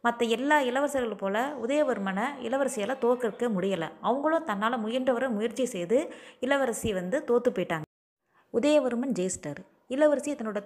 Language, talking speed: Tamil, 120 wpm